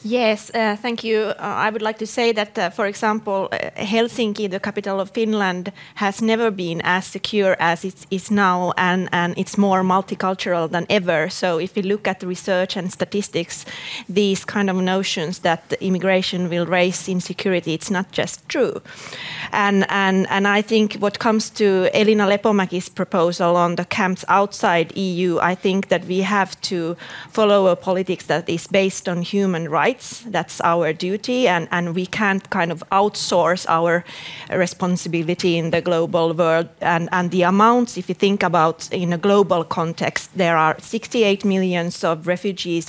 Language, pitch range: Finnish, 175-205 Hz